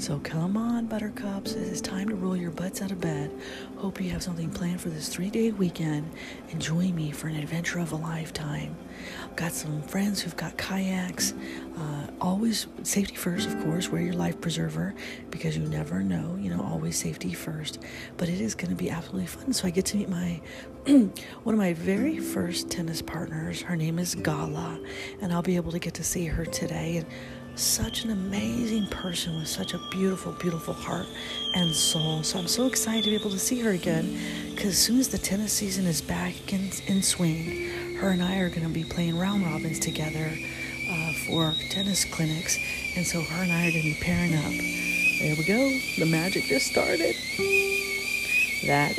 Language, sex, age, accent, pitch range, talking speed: English, female, 40-59, American, 155-195 Hz, 195 wpm